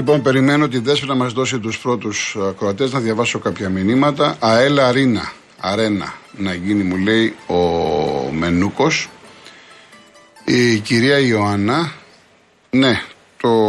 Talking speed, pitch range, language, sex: 125 wpm, 100-135 Hz, Greek, male